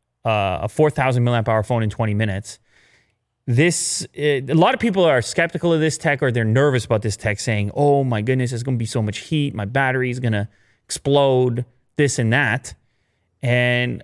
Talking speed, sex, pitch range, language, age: 195 wpm, male, 115-155 Hz, English, 30-49